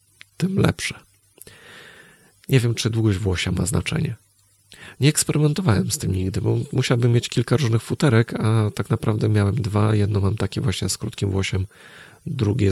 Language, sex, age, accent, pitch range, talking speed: Polish, male, 40-59, native, 100-120 Hz, 155 wpm